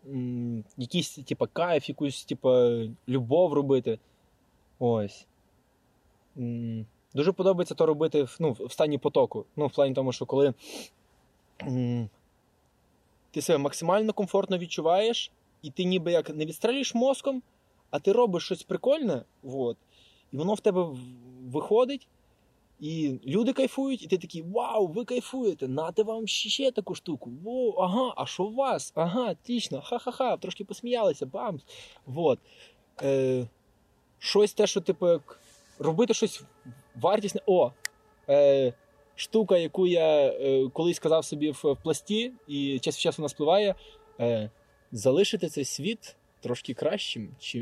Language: Ukrainian